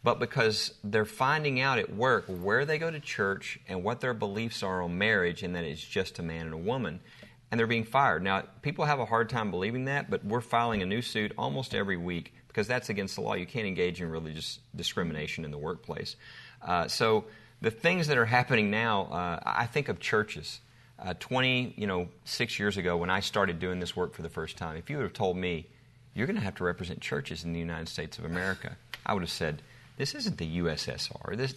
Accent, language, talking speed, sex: American, English, 230 wpm, male